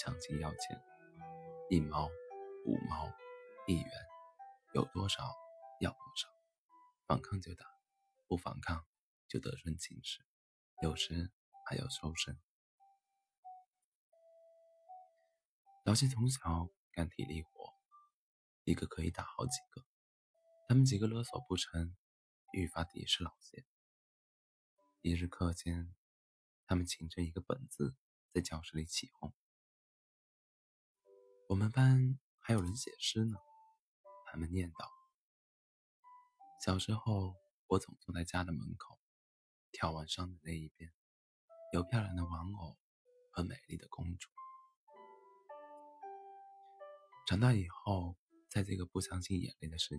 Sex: male